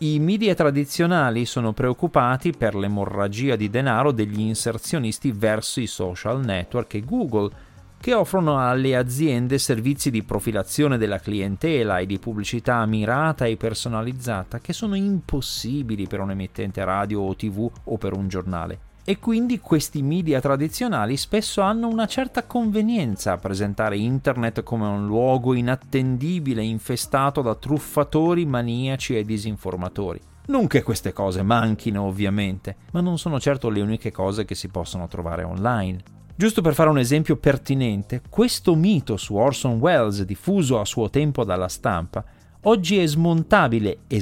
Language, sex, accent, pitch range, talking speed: Italian, male, native, 105-155 Hz, 145 wpm